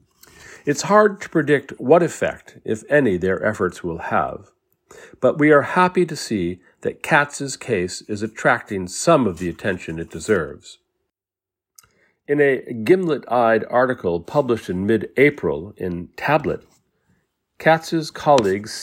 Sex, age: male, 50-69